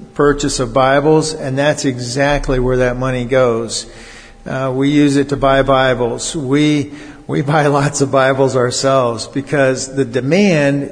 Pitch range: 130-150 Hz